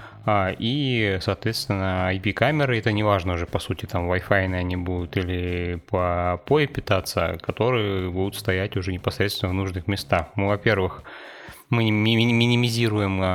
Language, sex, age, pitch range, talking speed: Russian, male, 20-39, 90-105 Hz, 130 wpm